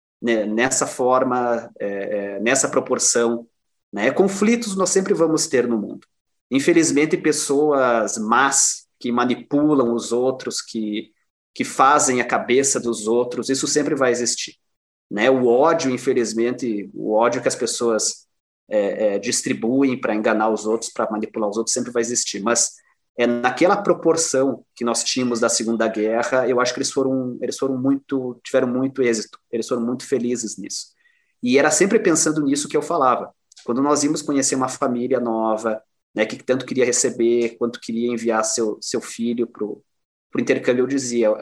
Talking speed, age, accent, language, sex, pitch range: 160 wpm, 30-49, Brazilian, Portuguese, male, 115-135 Hz